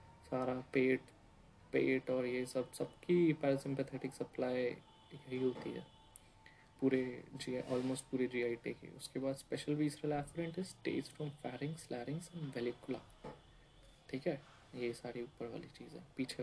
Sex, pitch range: male, 125-145 Hz